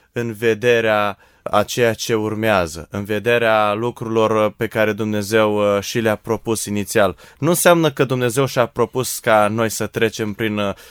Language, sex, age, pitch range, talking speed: Romanian, male, 20-39, 110-130 Hz, 150 wpm